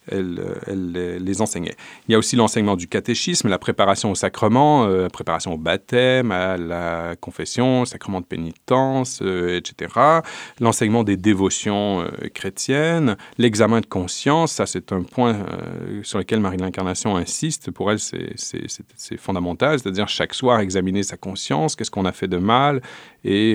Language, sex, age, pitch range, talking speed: French, male, 40-59, 95-120 Hz, 170 wpm